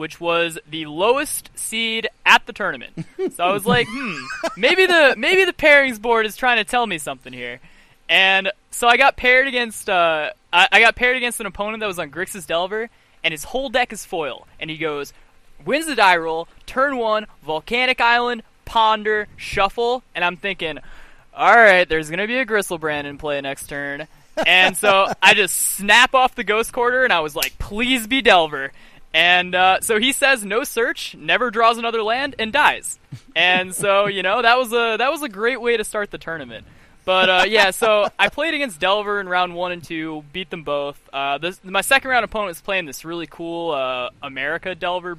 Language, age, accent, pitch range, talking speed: English, 20-39, American, 165-230 Hz, 205 wpm